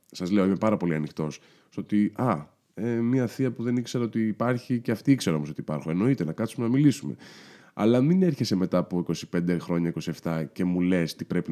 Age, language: 20-39, Greek